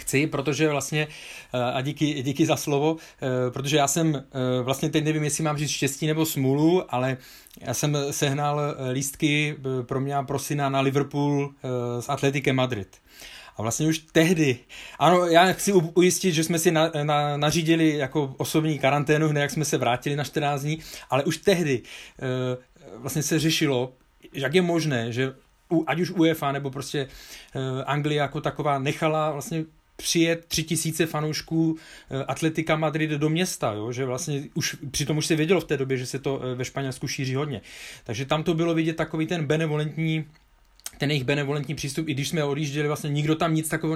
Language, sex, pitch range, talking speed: Czech, male, 135-155 Hz, 170 wpm